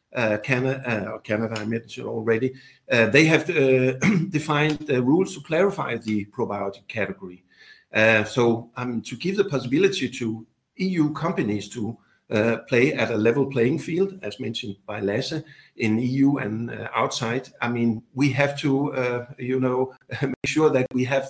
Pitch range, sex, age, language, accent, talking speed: 110-135 Hz, male, 60-79, English, Danish, 165 wpm